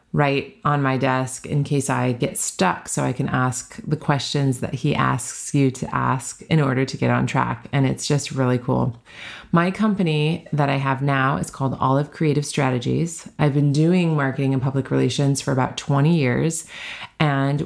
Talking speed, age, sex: 185 wpm, 30-49, female